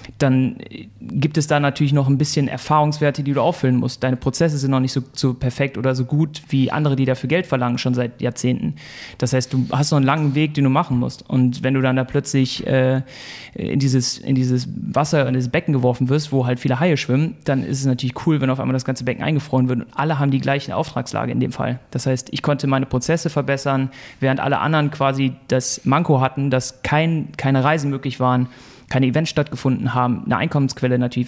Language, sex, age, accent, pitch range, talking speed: German, male, 30-49, German, 125-145 Hz, 225 wpm